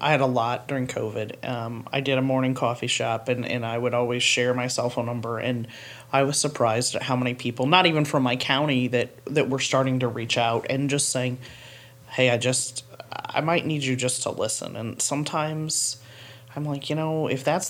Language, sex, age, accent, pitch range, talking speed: English, male, 30-49, American, 125-145 Hz, 215 wpm